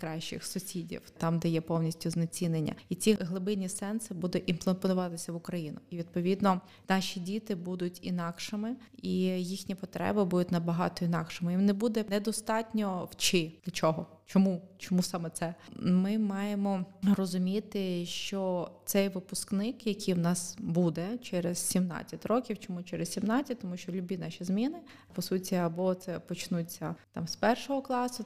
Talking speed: 145 wpm